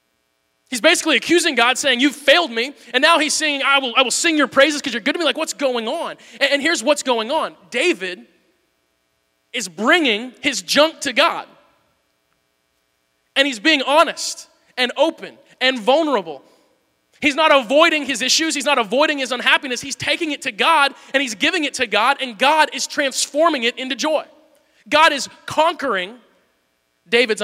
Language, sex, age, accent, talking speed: English, male, 20-39, American, 175 wpm